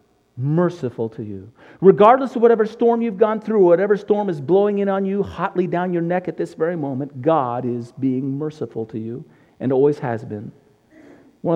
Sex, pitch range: male, 115-175 Hz